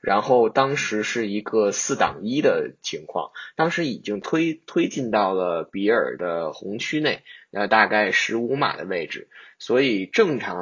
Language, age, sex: Chinese, 10-29, male